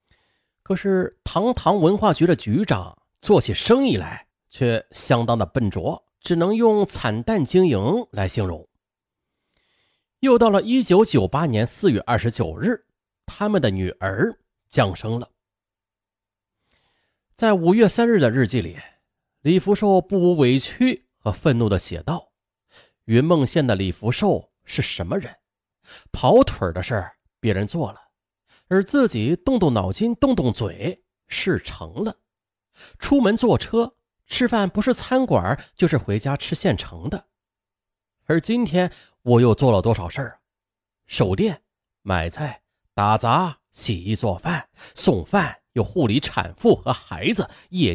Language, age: Chinese, 30-49